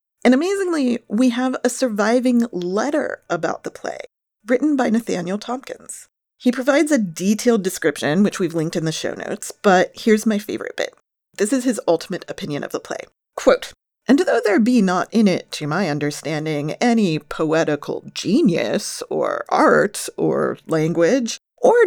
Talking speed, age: 160 wpm, 40-59